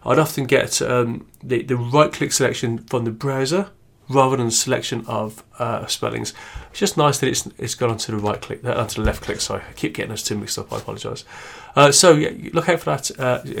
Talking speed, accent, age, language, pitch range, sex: 215 wpm, British, 30-49, English, 120-150 Hz, male